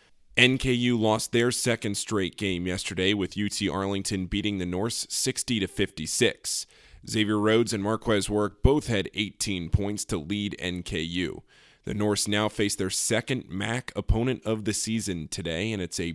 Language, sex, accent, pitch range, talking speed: English, male, American, 95-110 Hz, 155 wpm